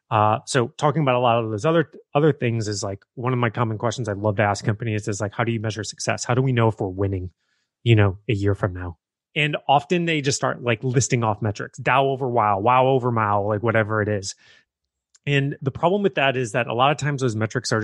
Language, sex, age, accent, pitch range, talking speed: English, male, 30-49, American, 105-135 Hz, 255 wpm